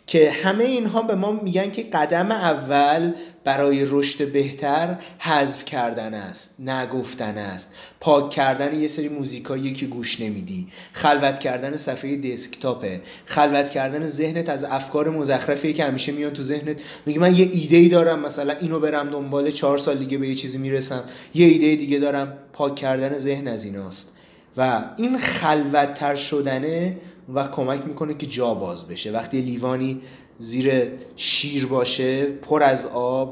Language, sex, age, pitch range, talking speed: Persian, male, 30-49, 125-150 Hz, 155 wpm